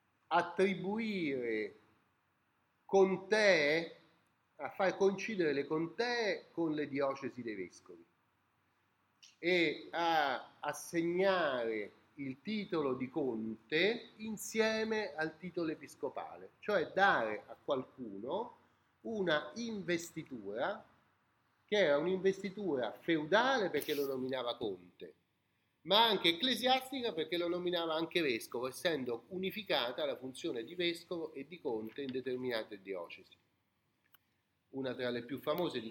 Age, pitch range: 40-59, 120-190 Hz